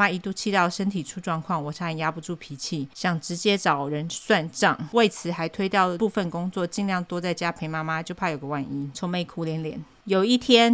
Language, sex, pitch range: Chinese, female, 165-205 Hz